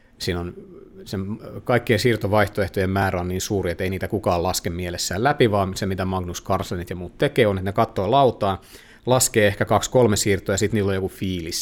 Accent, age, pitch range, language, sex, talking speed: native, 30-49, 90-105 Hz, Finnish, male, 200 wpm